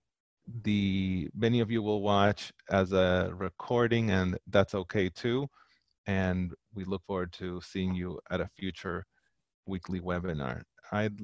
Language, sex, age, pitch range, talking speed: English, male, 30-49, 95-115 Hz, 140 wpm